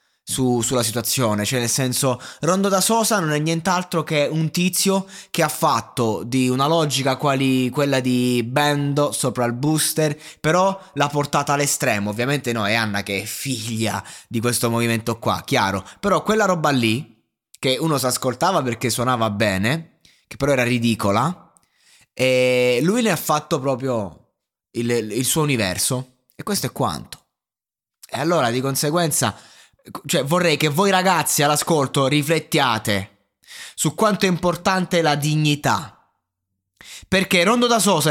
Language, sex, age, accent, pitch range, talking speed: Italian, male, 20-39, native, 125-175 Hz, 145 wpm